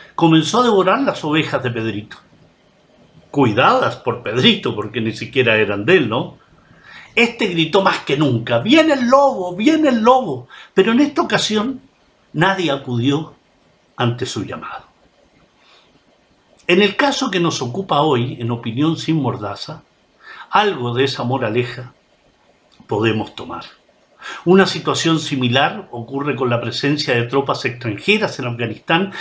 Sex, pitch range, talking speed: male, 130-195 Hz, 135 wpm